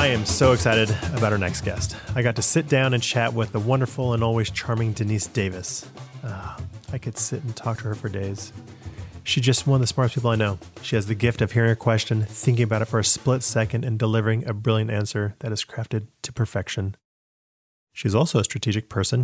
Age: 30-49